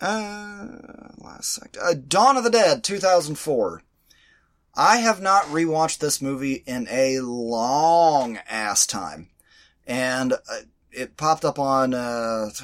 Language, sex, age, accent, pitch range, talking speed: English, male, 30-49, American, 115-190 Hz, 130 wpm